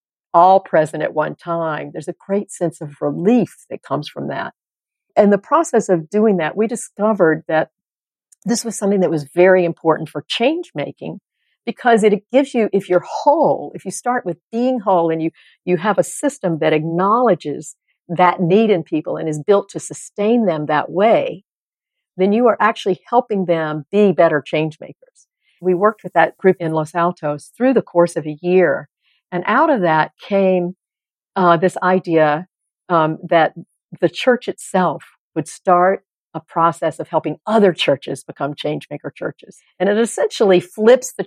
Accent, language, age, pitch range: American, English, 60-79, 165-215 Hz